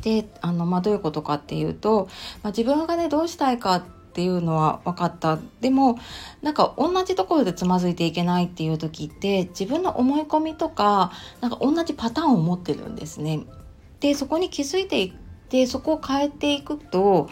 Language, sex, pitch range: Japanese, female, 170-250 Hz